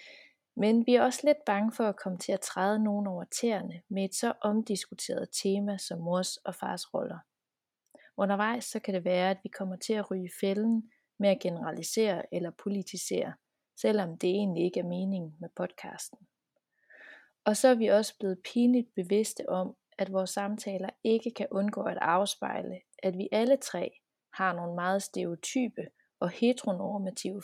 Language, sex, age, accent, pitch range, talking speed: Danish, female, 30-49, native, 185-225 Hz, 170 wpm